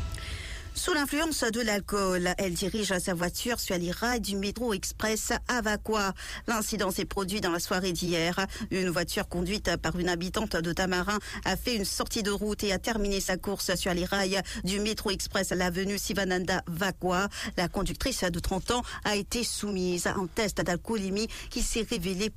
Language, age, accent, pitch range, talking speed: English, 50-69, French, 180-215 Hz, 175 wpm